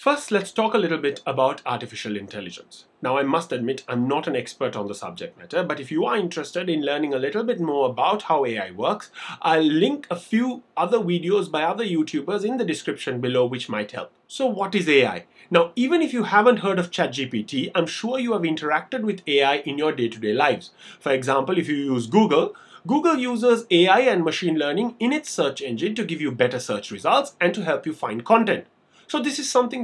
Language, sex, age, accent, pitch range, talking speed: English, male, 30-49, Indian, 145-225 Hz, 215 wpm